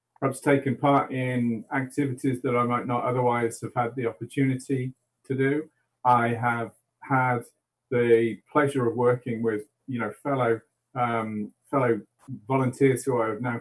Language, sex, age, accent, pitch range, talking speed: English, male, 40-59, British, 120-145 Hz, 150 wpm